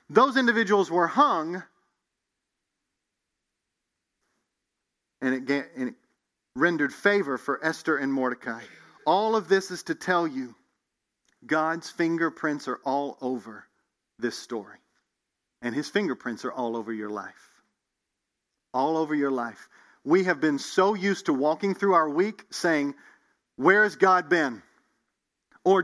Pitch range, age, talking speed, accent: 160-225 Hz, 40-59, 130 wpm, American